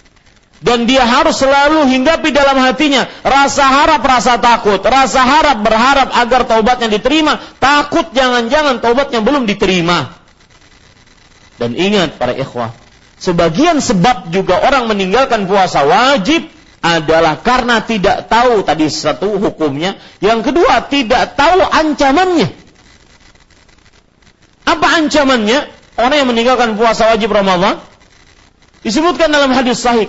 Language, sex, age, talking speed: Malay, male, 40-59, 115 wpm